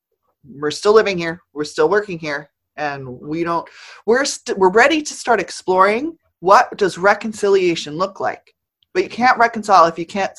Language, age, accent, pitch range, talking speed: English, 30-49, American, 150-235 Hz, 180 wpm